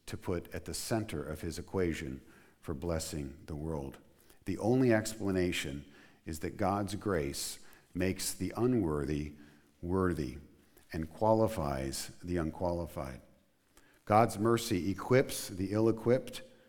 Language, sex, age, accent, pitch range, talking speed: English, male, 50-69, American, 80-105 Hz, 115 wpm